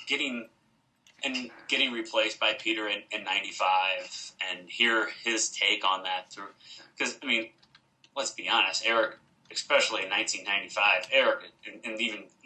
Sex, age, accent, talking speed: male, 20-39, American, 125 wpm